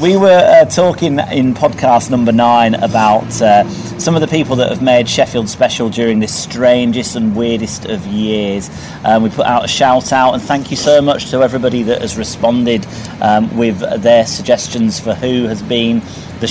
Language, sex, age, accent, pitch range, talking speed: English, male, 40-59, British, 115-150 Hz, 190 wpm